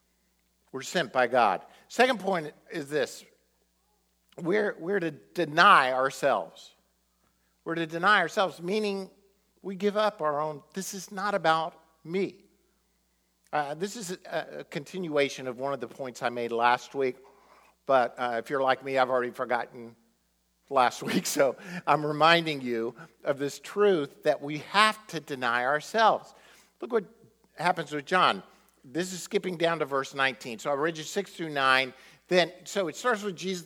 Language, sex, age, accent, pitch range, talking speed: English, male, 50-69, American, 130-180 Hz, 165 wpm